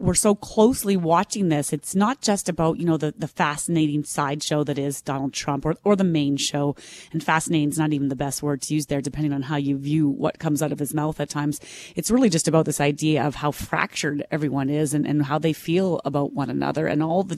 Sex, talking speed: female, 240 wpm